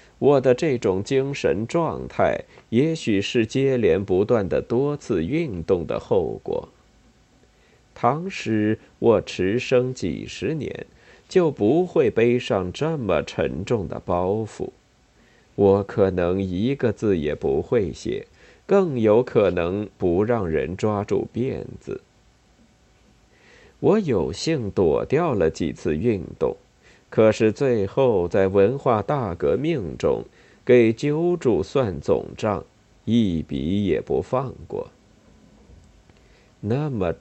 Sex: male